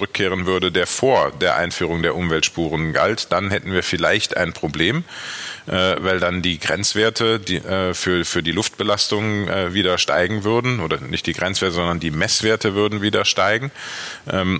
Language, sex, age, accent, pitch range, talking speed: German, male, 40-59, German, 90-105 Hz, 170 wpm